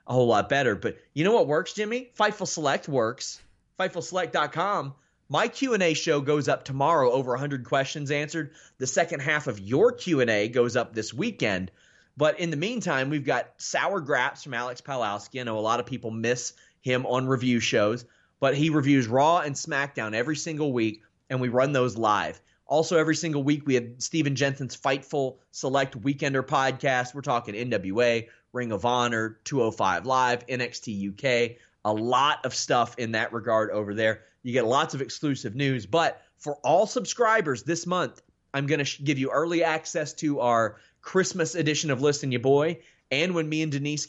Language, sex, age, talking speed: English, male, 30-49, 180 wpm